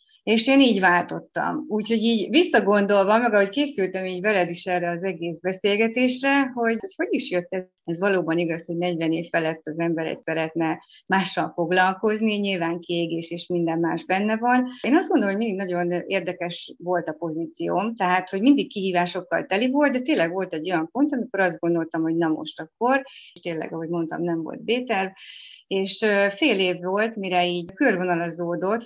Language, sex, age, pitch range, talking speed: Hungarian, female, 30-49, 175-220 Hz, 175 wpm